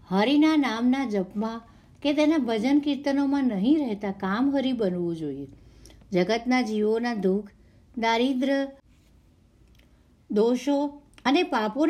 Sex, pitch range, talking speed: female, 195-255 Hz, 85 wpm